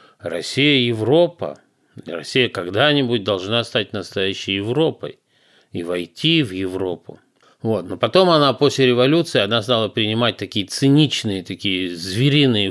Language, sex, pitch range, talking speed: Russian, male, 105-145 Hz, 120 wpm